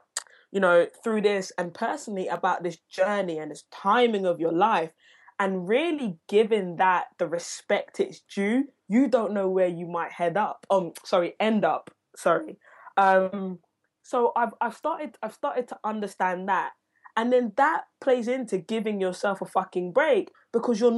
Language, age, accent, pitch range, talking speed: English, 20-39, British, 180-235 Hz, 165 wpm